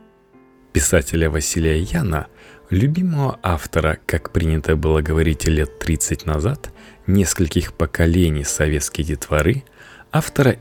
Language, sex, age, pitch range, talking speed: Russian, male, 20-39, 80-105 Hz, 95 wpm